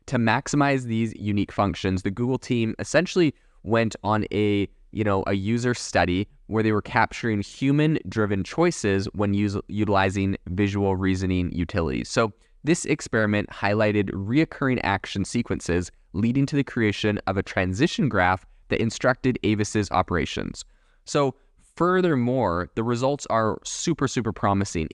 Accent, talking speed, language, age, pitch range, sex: American, 135 wpm, English, 20-39, 95-120 Hz, male